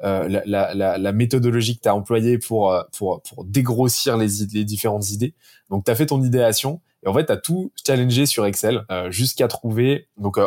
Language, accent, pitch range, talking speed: French, French, 100-125 Hz, 205 wpm